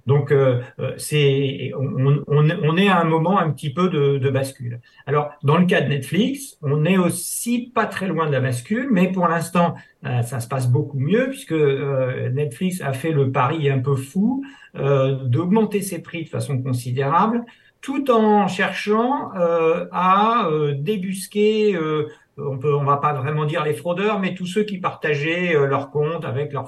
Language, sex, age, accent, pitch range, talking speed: French, male, 50-69, French, 135-185 Hz, 185 wpm